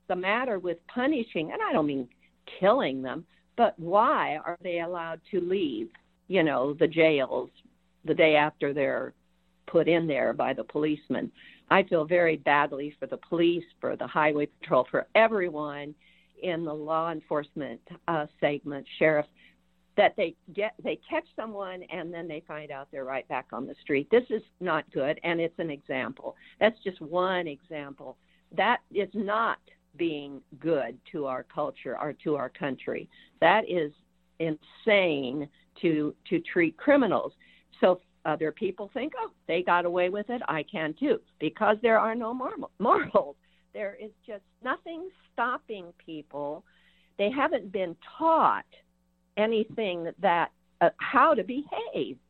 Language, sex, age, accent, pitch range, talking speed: English, female, 50-69, American, 150-215 Hz, 155 wpm